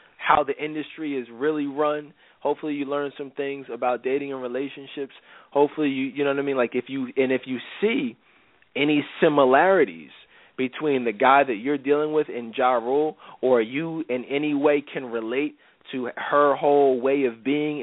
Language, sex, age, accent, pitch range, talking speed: English, male, 20-39, American, 130-160 Hz, 180 wpm